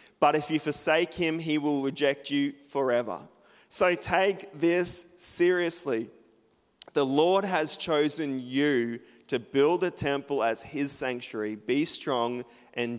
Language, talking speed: English, 135 wpm